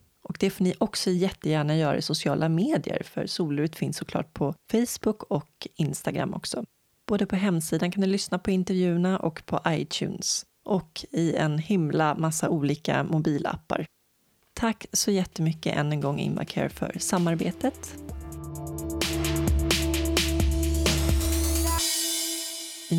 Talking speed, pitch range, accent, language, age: 125 wpm, 150-185 Hz, native, Swedish, 30-49